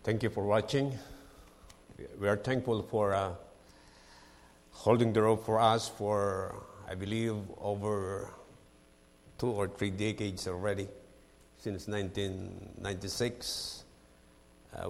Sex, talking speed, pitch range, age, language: male, 100 wpm, 95-115 Hz, 50-69, English